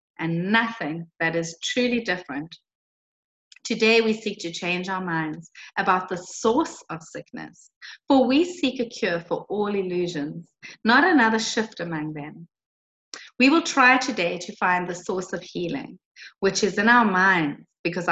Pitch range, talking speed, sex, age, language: 175-240 Hz, 155 wpm, female, 30-49, English